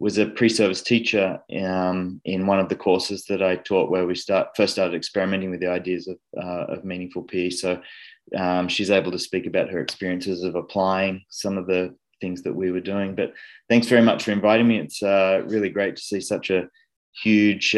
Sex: male